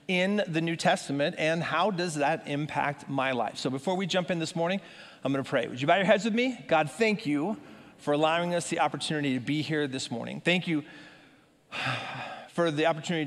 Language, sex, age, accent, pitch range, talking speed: English, male, 40-59, American, 150-225 Hz, 215 wpm